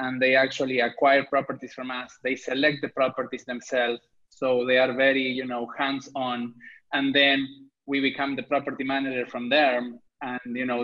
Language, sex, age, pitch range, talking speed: English, male, 20-39, 130-155 Hz, 170 wpm